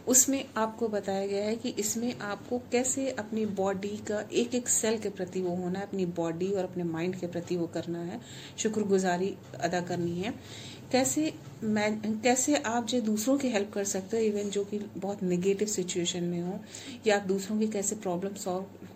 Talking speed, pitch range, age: 190 wpm, 185-220 Hz, 30-49